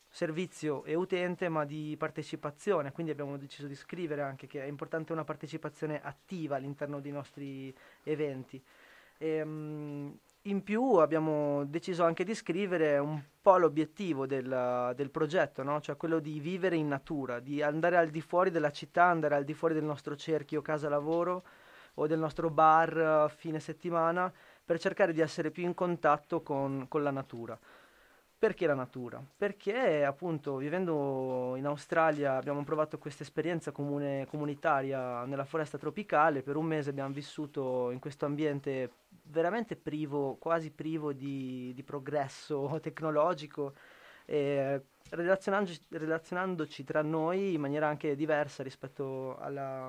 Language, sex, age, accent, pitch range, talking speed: Italian, male, 20-39, native, 140-165 Hz, 140 wpm